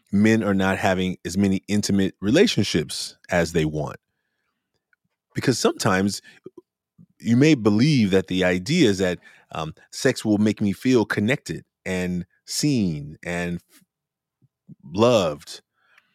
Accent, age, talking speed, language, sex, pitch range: American, 30-49, 120 wpm, English, male, 90-110 Hz